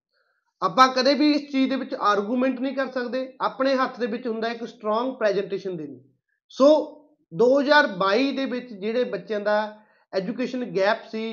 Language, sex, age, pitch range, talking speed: Punjabi, male, 30-49, 200-260 Hz, 160 wpm